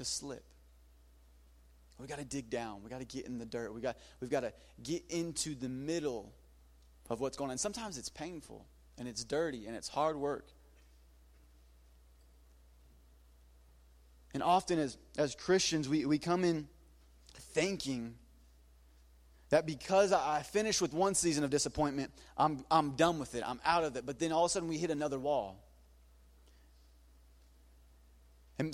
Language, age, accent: English, 30-49, American